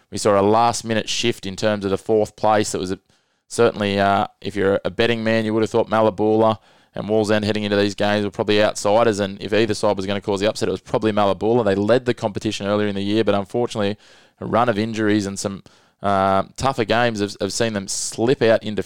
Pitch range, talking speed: 100-110 Hz, 240 wpm